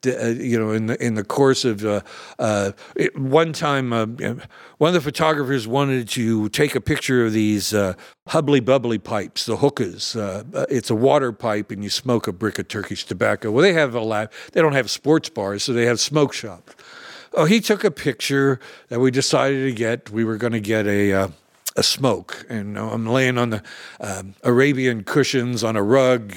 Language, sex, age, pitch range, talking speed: English, male, 60-79, 110-140 Hz, 200 wpm